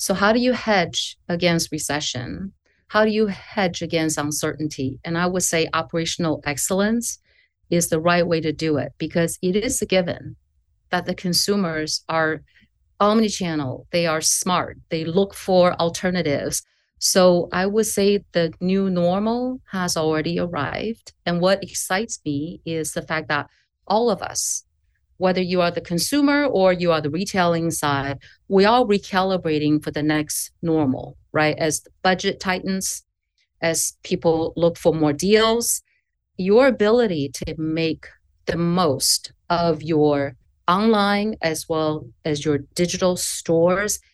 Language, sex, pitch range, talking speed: English, female, 155-190 Hz, 145 wpm